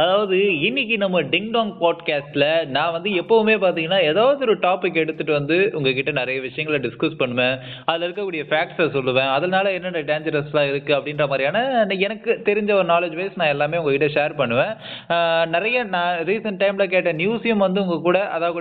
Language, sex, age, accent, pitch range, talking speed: Tamil, male, 20-39, native, 145-195 Hz, 155 wpm